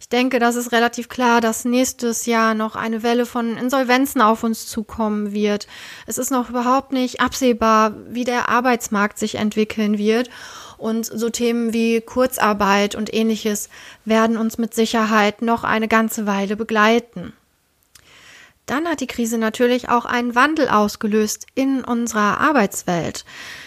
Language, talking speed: German, 145 wpm